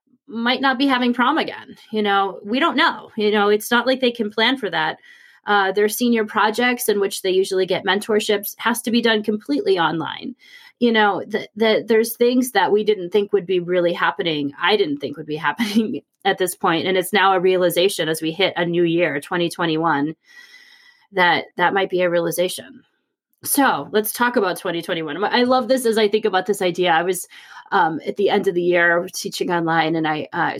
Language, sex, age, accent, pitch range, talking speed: English, female, 30-49, American, 190-250 Hz, 210 wpm